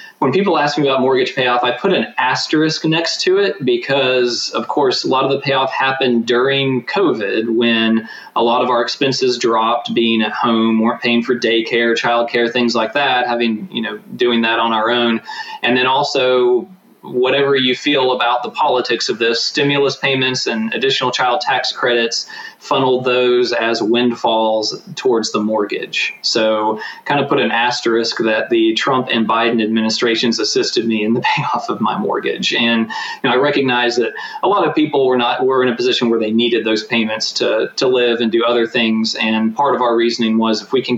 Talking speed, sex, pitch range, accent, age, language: 195 wpm, male, 115-130 Hz, American, 20-39, English